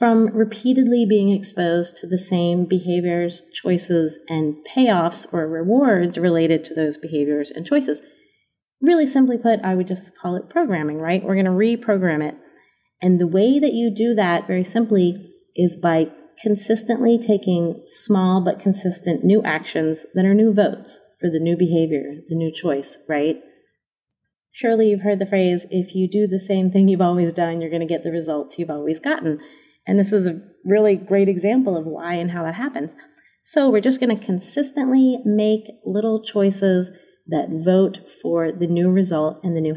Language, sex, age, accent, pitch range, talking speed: English, female, 30-49, American, 170-210 Hz, 175 wpm